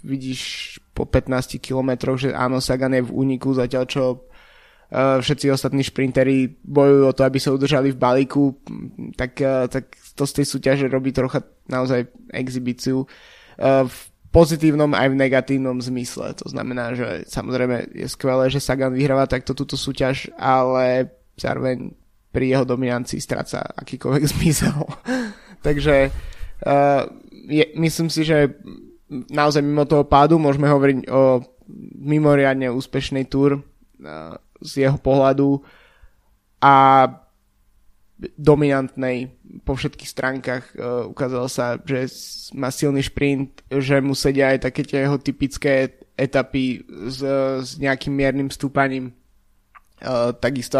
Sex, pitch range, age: male, 130-140 Hz, 20-39